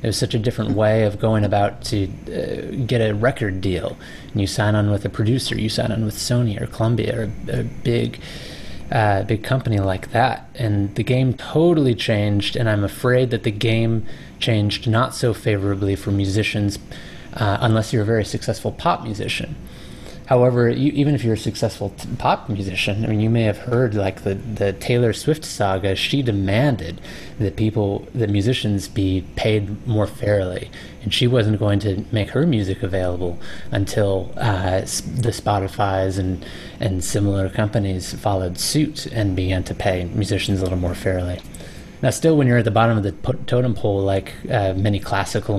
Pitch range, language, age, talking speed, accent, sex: 100-120 Hz, English, 20-39, 180 wpm, American, male